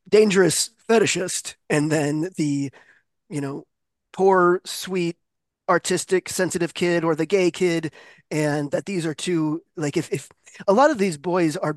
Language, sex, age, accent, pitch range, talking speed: English, male, 20-39, American, 150-185 Hz, 155 wpm